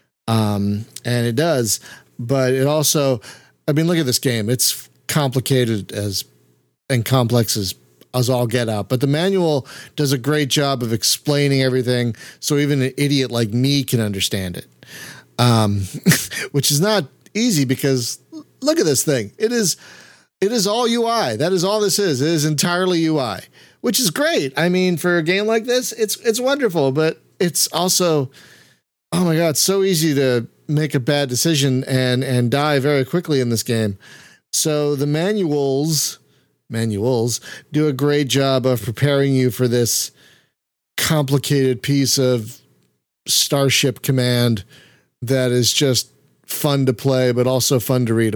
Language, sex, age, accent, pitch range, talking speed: English, male, 40-59, American, 120-150 Hz, 160 wpm